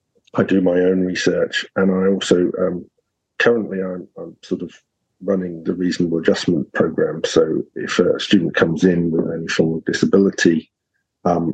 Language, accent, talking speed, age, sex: English, British, 160 wpm, 50-69, male